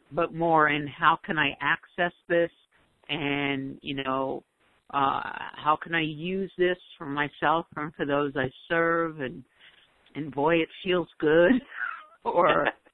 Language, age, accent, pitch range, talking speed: English, 50-69, American, 135-155 Hz, 145 wpm